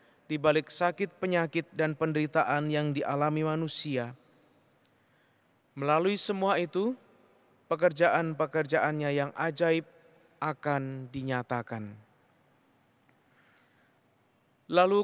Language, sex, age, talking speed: Indonesian, male, 20-39, 70 wpm